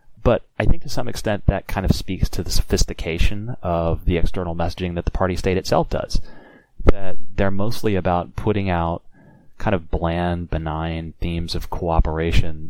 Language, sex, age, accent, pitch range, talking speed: English, male, 30-49, American, 85-95 Hz, 170 wpm